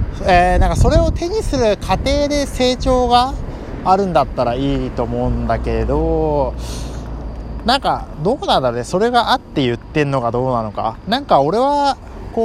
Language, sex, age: Japanese, male, 20-39